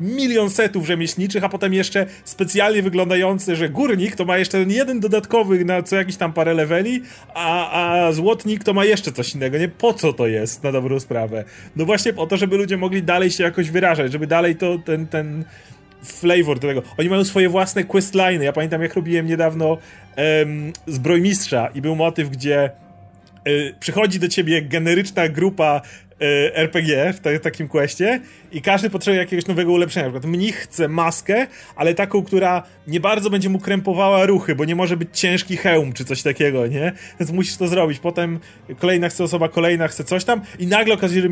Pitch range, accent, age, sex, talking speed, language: 160-195 Hz, native, 30-49, male, 190 wpm, Polish